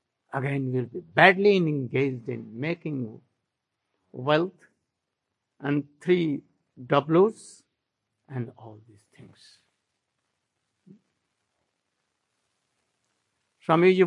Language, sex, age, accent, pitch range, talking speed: English, male, 60-79, Indian, 140-195 Hz, 70 wpm